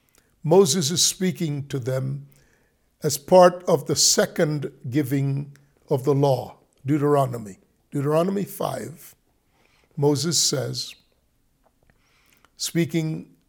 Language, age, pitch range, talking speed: English, 50-69, 135-175 Hz, 90 wpm